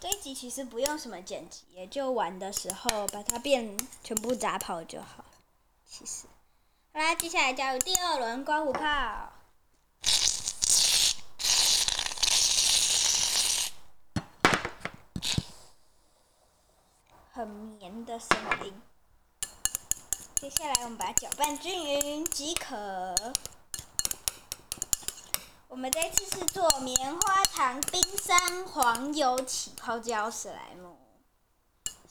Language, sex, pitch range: Chinese, male, 220-310 Hz